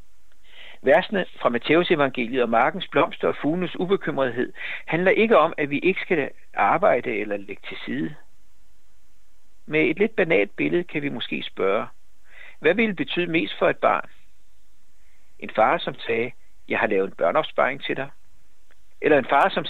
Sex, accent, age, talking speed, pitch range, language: male, native, 60-79, 165 wpm, 85-140 Hz, Danish